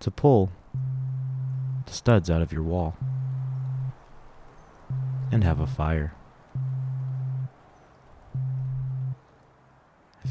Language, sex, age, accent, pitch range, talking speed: English, male, 30-49, American, 95-130 Hz, 75 wpm